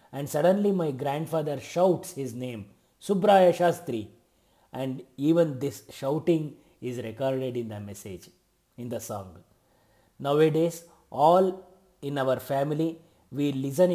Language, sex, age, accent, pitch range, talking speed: Kannada, male, 30-49, native, 125-165 Hz, 120 wpm